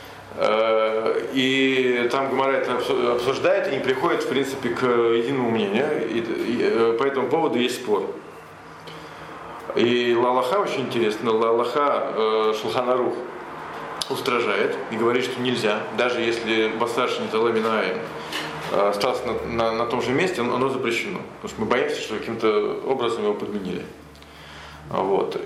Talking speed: 125 wpm